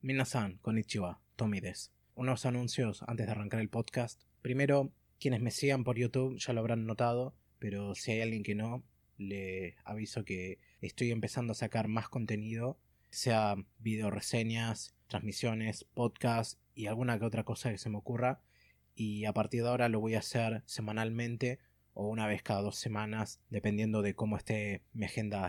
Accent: Argentinian